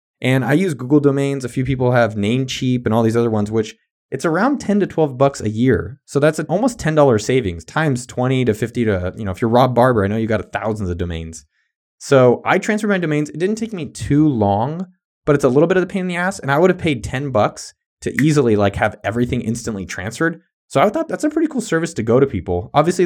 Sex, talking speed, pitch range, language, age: male, 250 wpm, 105-150 Hz, English, 20-39